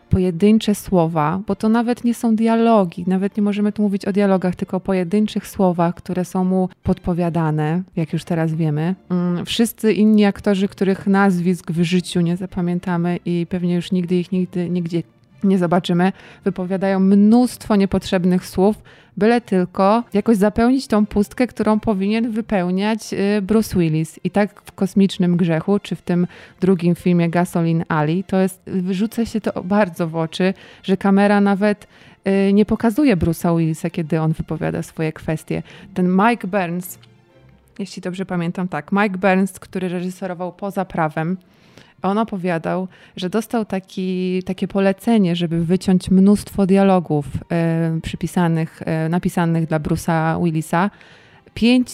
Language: Polish